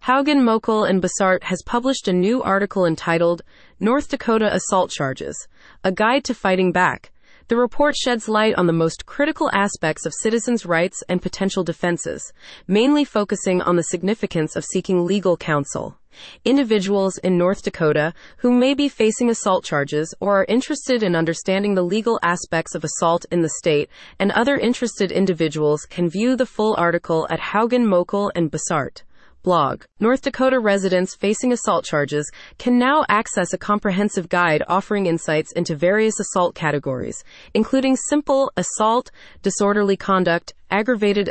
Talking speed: 155 wpm